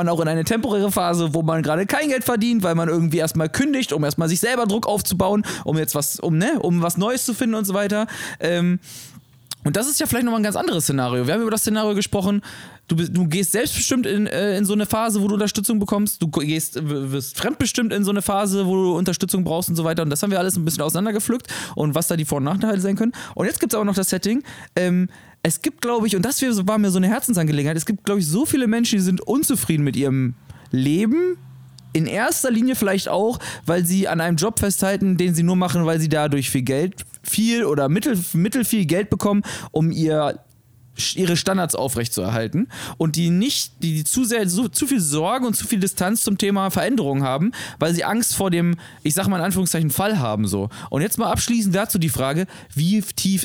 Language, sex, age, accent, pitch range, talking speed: German, male, 20-39, German, 155-215 Hz, 230 wpm